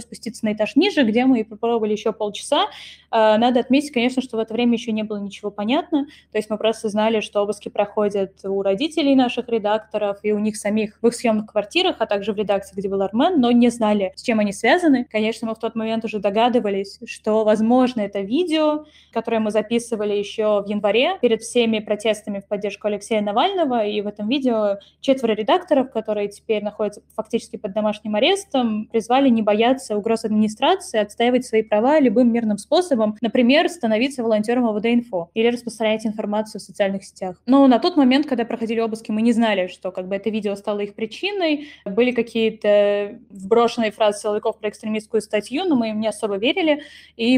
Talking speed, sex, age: 185 wpm, female, 10-29